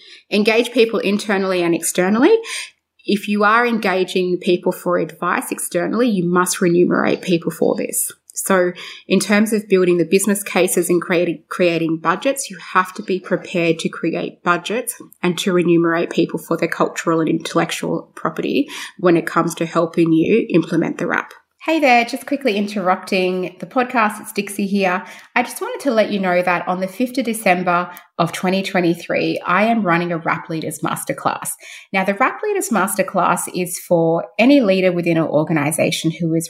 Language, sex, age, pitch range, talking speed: English, female, 20-39, 170-210 Hz, 170 wpm